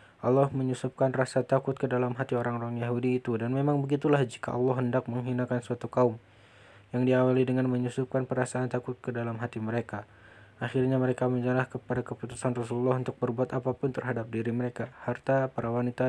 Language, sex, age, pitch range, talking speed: Indonesian, male, 20-39, 115-130 Hz, 165 wpm